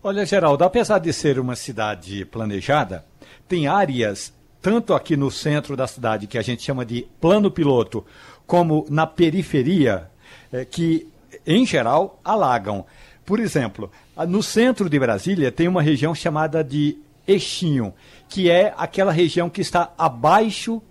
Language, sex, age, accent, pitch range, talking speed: Portuguese, male, 60-79, Brazilian, 140-195 Hz, 140 wpm